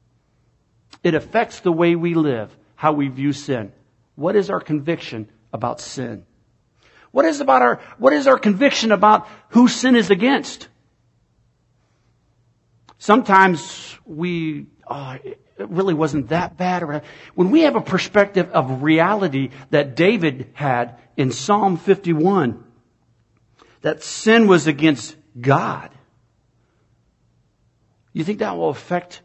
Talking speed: 125 wpm